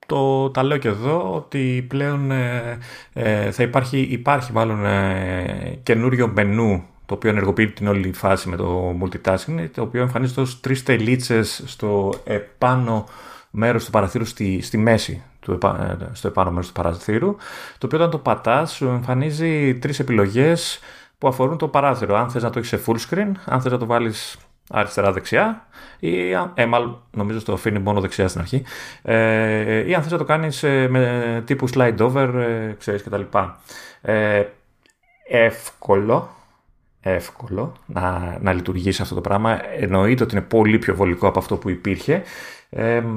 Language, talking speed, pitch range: Greek, 165 wpm, 100-135 Hz